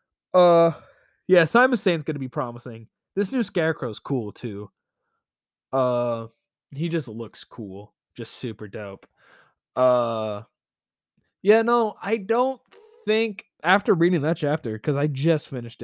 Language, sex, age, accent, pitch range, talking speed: English, male, 20-39, American, 120-180 Hz, 130 wpm